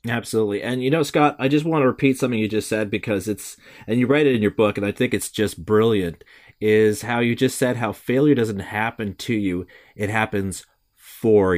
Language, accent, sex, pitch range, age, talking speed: English, American, male, 110-140 Hz, 30-49, 225 wpm